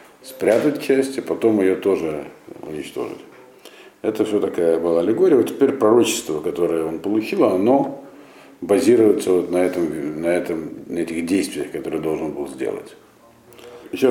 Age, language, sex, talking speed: 50-69, Russian, male, 145 wpm